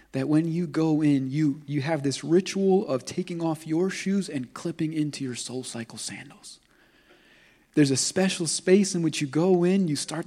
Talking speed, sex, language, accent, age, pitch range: 195 wpm, male, English, American, 30-49, 145-180 Hz